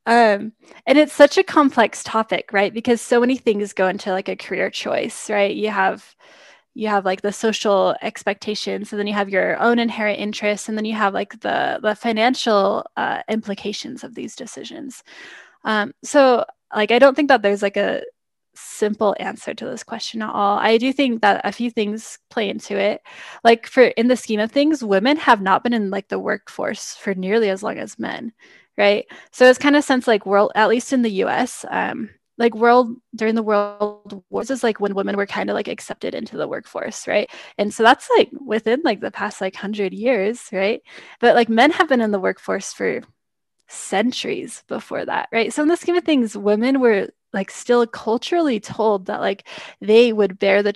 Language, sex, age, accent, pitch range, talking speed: English, female, 10-29, American, 205-245 Hz, 205 wpm